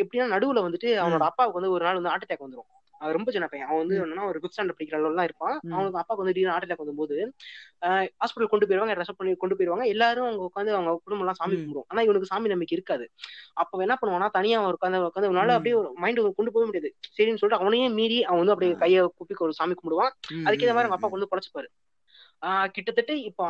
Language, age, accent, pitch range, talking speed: Tamil, 20-39, native, 170-225 Hz, 185 wpm